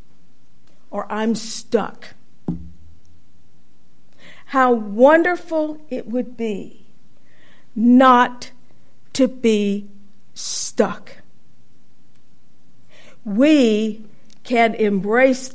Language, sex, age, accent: English, female, 50-69, American